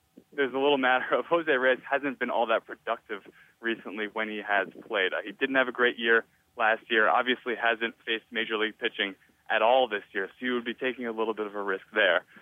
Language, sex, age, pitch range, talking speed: English, male, 20-39, 110-135 Hz, 225 wpm